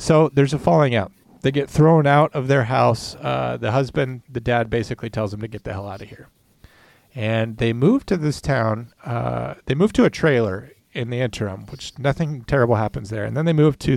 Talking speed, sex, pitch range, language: 225 wpm, male, 115-150 Hz, English